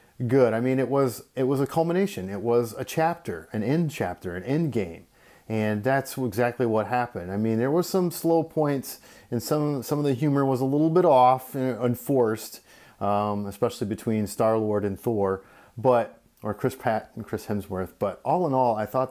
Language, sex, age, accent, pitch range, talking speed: English, male, 30-49, American, 100-130 Hz, 200 wpm